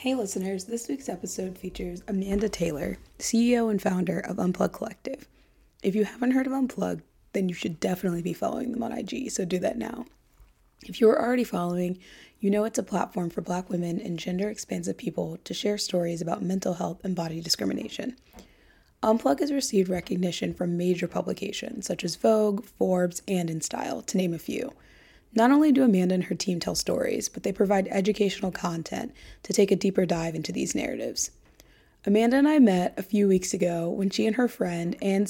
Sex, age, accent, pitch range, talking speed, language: female, 20-39, American, 180-215 Hz, 190 wpm, English